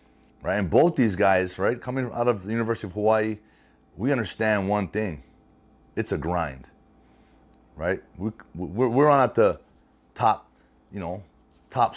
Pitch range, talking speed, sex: 95-120 Hz, 145 wpm, male